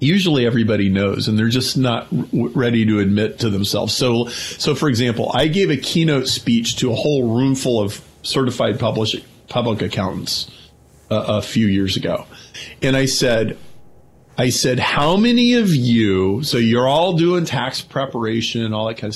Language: English